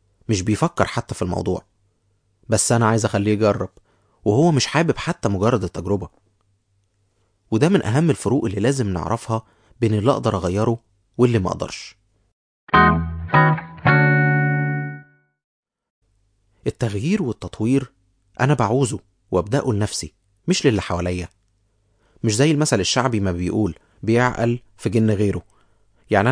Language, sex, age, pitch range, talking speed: Arabic, male, 30-49, 95-115 Hz, 115 wpm